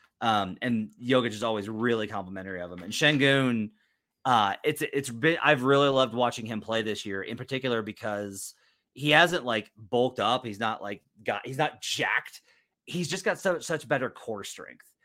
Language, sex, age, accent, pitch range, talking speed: English, male, 30-49, American, 110-150 Hz, 185 wpm